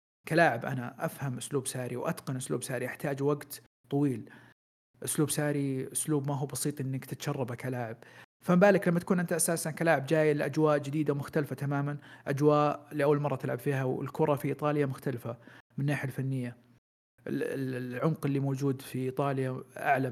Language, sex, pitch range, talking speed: Arabic, male, 130-150 Hz, 150 wpm